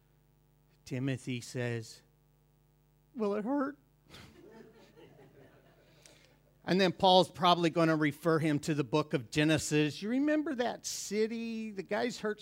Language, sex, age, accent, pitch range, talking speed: English, male, 50-69, American, 145-195 Hz, 120 wpm